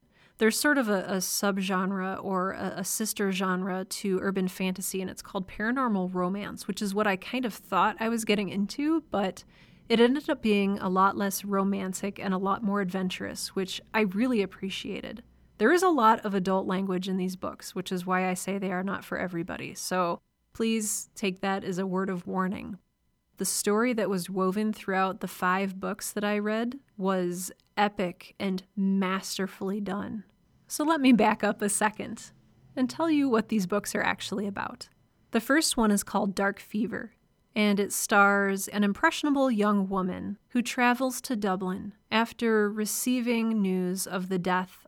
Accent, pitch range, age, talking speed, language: American, 185-215 Hz, 30-49, 180 wpm, English